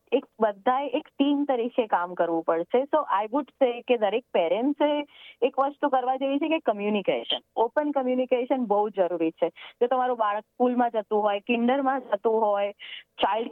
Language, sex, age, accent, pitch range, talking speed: Gujarati, female, 20-39, native, 210-265 Hz, 60 wpm